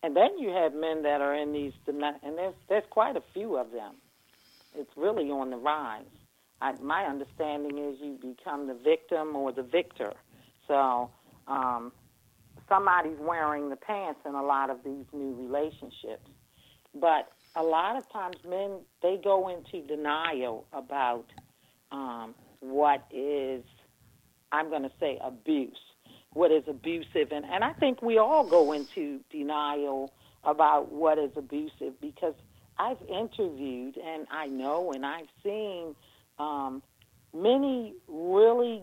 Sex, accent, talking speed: female, American, 145 wpm